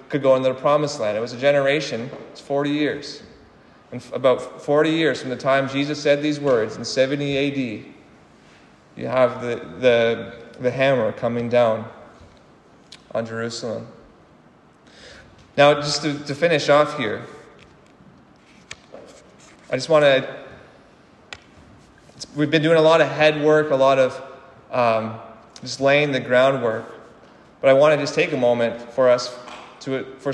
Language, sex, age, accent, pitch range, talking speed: English, male, 30-49, American, 120-145 Hz, 150 wpm